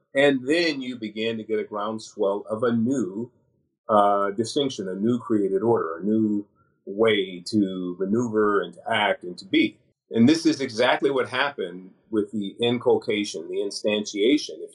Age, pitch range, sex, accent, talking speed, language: 40-59, 110-145 Hz, male, American, 165 wpm, English